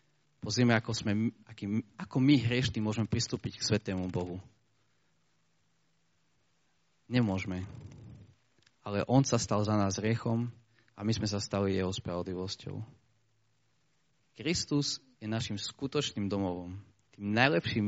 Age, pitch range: 30-49, 105-125 Hz